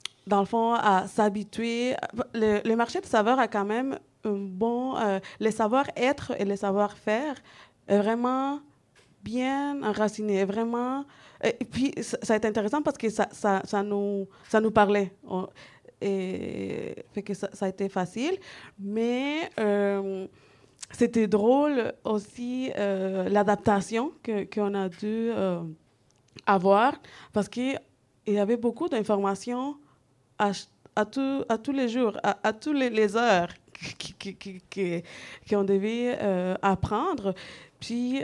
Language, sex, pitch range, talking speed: French, female, 195-240 Hz, 140 wpm